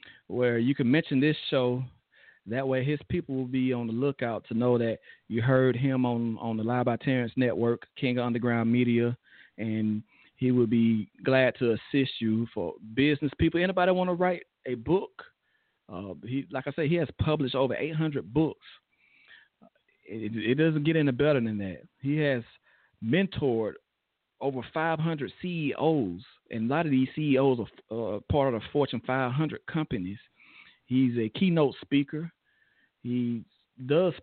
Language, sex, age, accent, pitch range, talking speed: English, male, 40-59, American, 115-150 Hz, 165 wpm